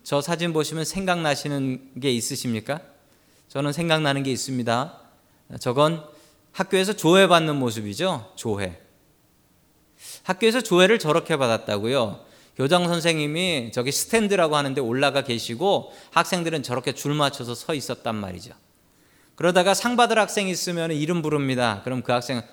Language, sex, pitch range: Korean, male, 125-195 Hz